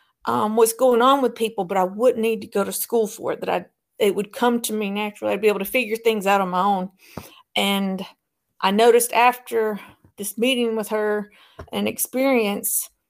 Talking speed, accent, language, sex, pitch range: 200 wpm, American, English, female, 200-235 Hz